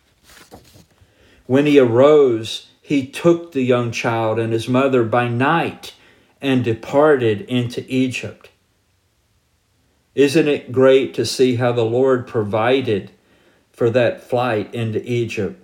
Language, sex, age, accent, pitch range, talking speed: English, male, 50-69, American, 110-135 Hz, 120 wpm